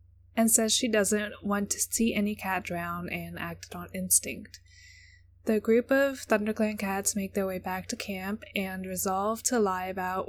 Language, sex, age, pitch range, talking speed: English, female, 10-29, 185-220 Hz, 175 wpm